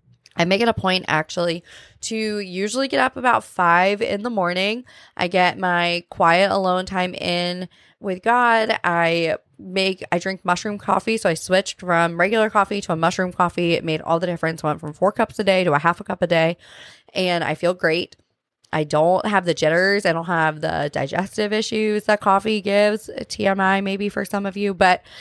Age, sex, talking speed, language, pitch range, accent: 20-39, female, 200 wpm, English, 175-205 Hz, American